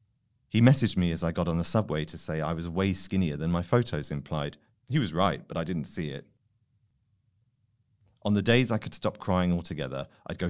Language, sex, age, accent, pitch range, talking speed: English, male, 40-59, British, 85-115 Hz, 210 wpm